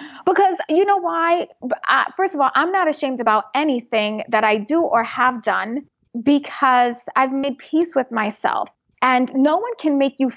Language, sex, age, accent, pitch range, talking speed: English, female, 20-39, American, 235-305 Hz, 175 wpm